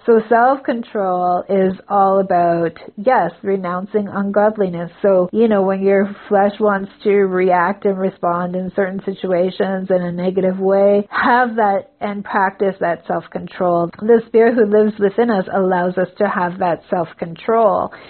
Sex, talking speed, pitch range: female, 145 wpm, 180-210 Hz